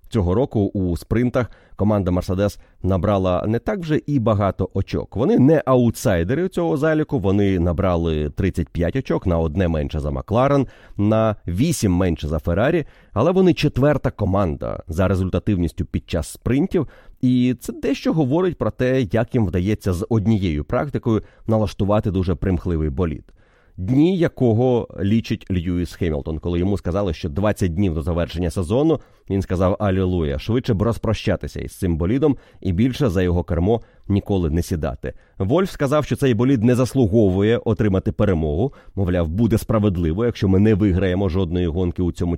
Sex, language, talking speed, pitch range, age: male, Ukrainian, 155 wpm, 90-115 Hz, 30-49